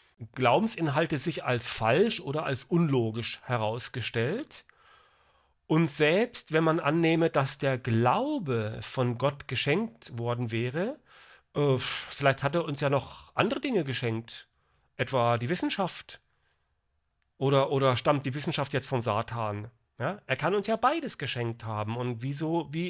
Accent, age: German, 40-59